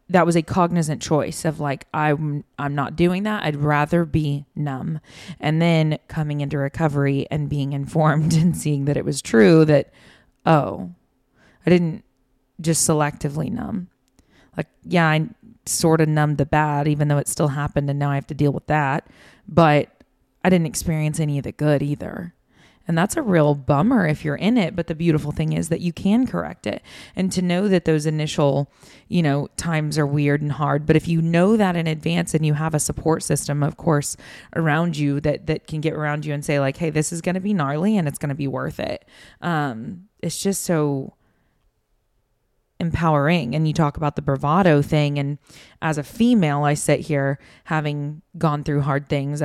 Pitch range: 145-165 Hz